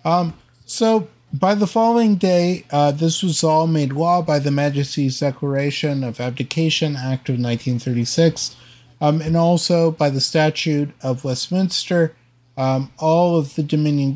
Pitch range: 135-170 Hz